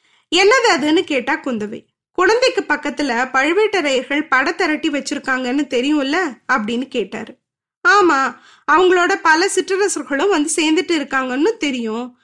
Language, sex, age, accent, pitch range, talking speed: Tamil, female, 20-39, native, 270-360 Hz, 105 wpm